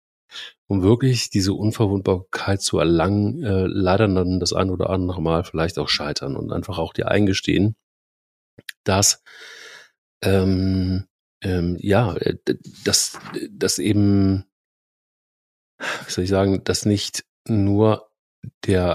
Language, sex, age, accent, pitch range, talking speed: German, male, 40-59, German, 90-110 Hz, 115 wpm